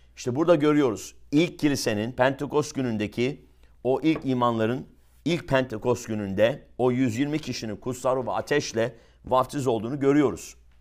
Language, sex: English, male